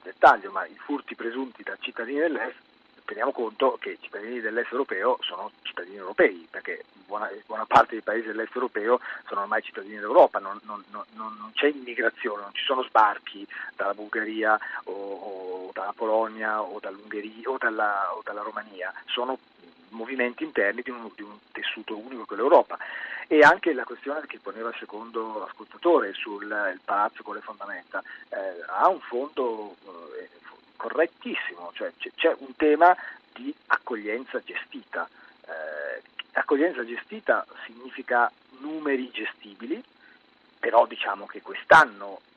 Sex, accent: male, native